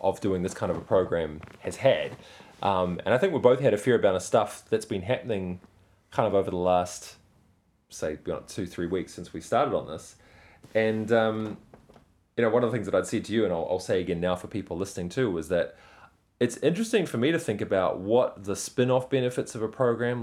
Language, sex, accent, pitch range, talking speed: English, male, Australian, 90-115 Hz, 230 wpm